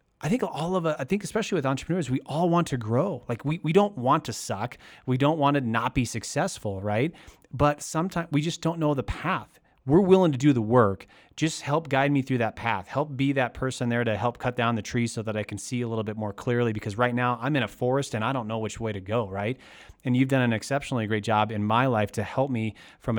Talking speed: 265 wpm